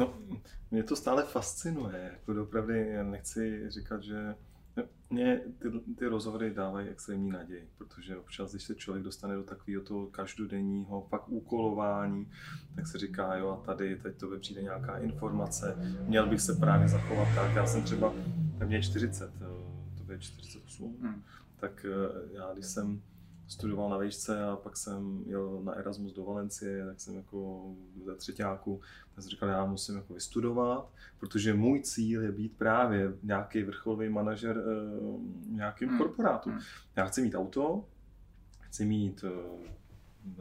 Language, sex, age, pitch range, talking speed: Czech, male, 20-39, 95-110 Hz, 150 wpm